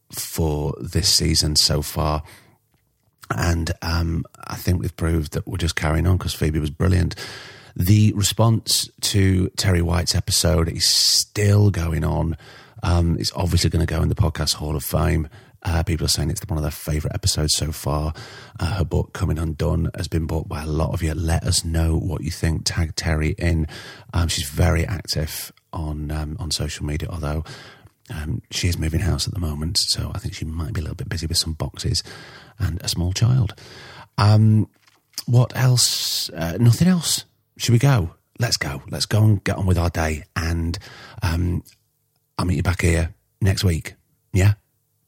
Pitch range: 80-110 Hz